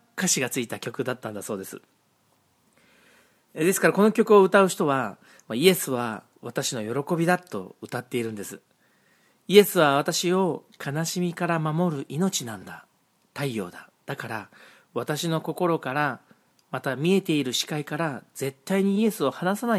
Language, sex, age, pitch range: Japanese, male, 40-59, 125-185 Hz